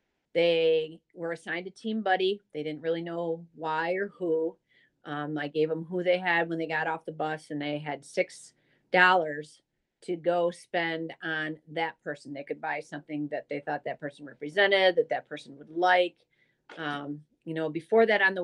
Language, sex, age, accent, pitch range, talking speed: English, female, 40-59, American, 150-180 Hz, 190 wpm